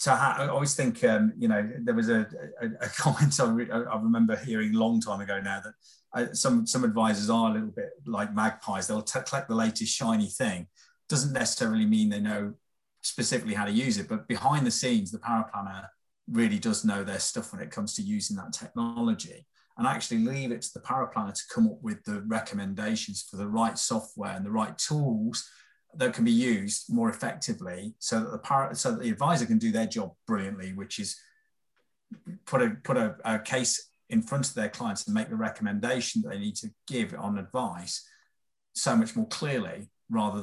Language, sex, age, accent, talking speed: English, male, 30-49, British, 200 wpm